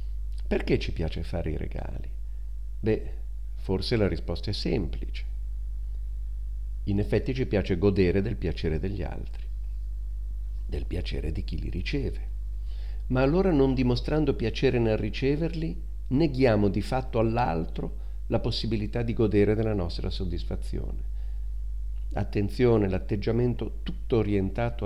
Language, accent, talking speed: Italian, native, 120 wpm